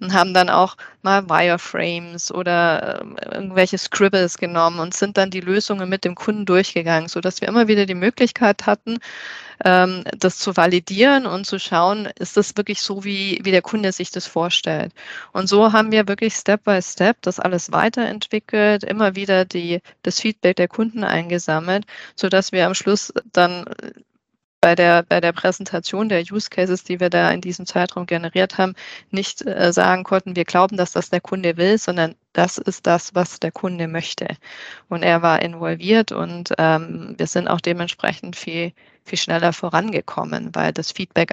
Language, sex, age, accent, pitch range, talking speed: German, female, 20-39, German, 175-200 Hz, 175 wpm